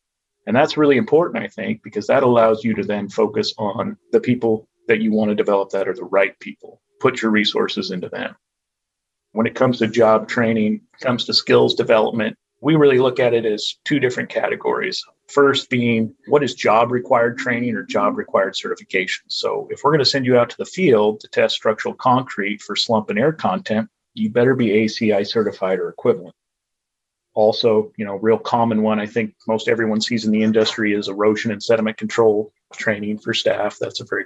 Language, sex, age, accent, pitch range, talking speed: English, male, 30-49, American, 105-125 Hz, 200 wpm